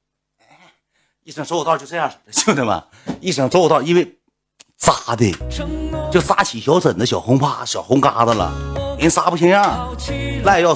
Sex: male